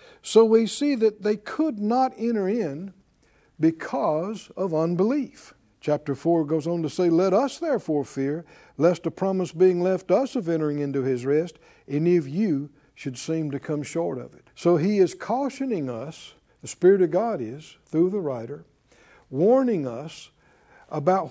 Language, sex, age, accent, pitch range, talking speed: English, male, 60-79, American, 150-225 Hz, 165 wpm